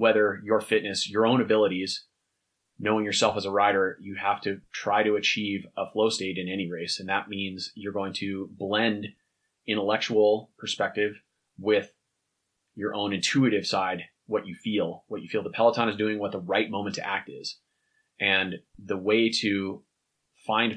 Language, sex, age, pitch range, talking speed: English, male, 30-49, 95-110 Hz, 170 wpm